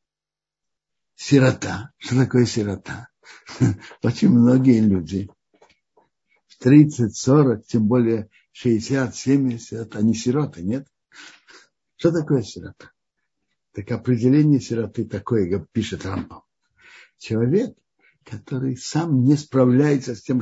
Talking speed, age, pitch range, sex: 100 wpm, 60-79, 110-145 Hz, male